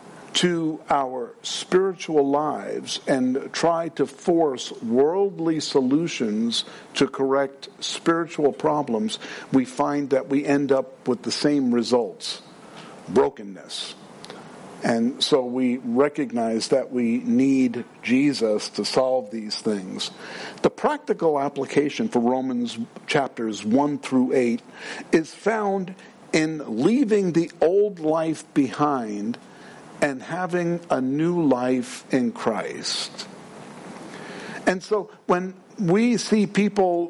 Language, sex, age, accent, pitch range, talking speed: English, male, 50-69, American, 135-175 Hz, 110 wpm